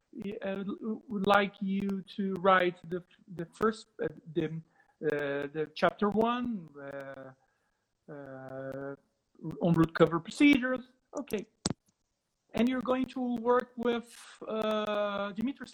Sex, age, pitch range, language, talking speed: male, 50-69, 190-240 Hz, English, 115 wpm